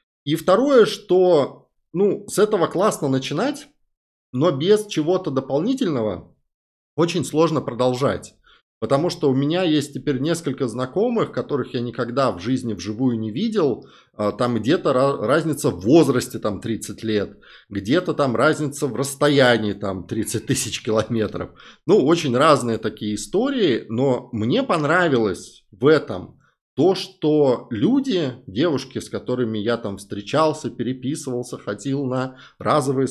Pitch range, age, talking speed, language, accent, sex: 110-155 Hz, 20-39, 125 wpm, Russian, native, male